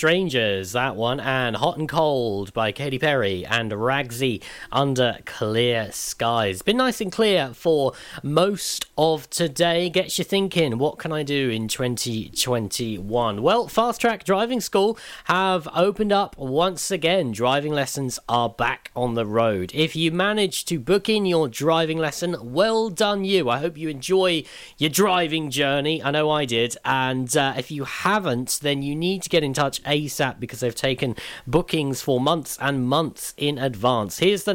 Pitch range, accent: 125-165 Hz, British